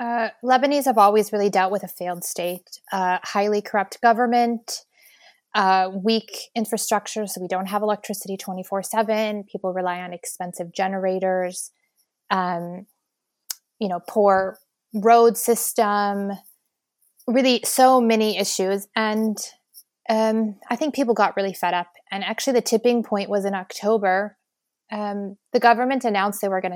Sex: female